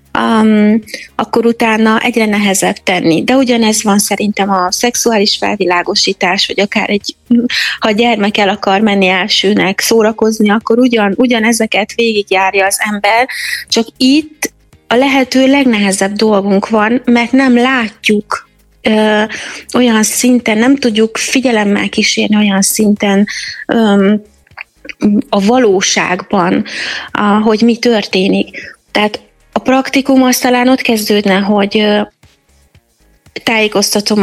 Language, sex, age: Hungarian, female, 30-49